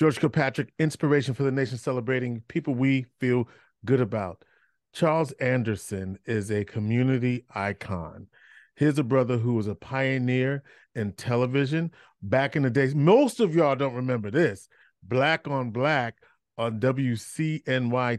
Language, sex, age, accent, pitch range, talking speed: English, male, 40-59, American, 120-145 Hz, 140 wpm